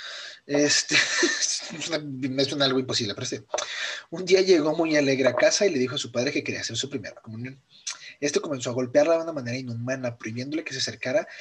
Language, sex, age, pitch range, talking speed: Spanish, male, 30-49, 120-145 Hz, 200 wpm